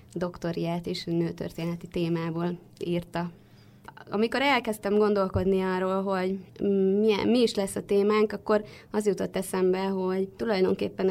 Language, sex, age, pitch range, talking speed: Hungarian, female, 20-39, 180-200 Hz, 115 wpm